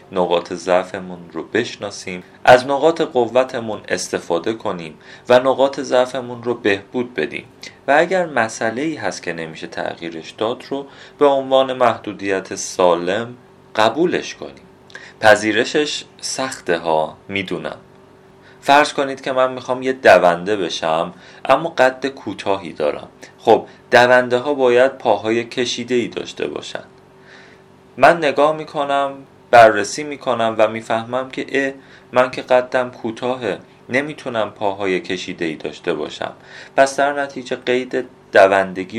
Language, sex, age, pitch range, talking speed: Persian, male, 40-59, 100-130 Hz, 120 wpm